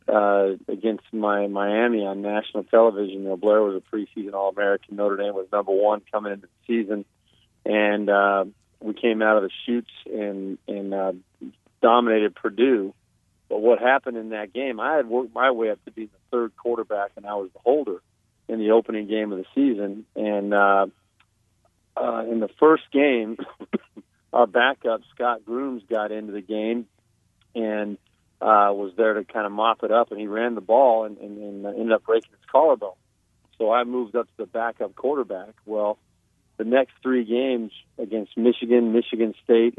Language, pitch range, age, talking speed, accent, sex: English, 100-115 Hz, 40-59, 180 wpm, American, male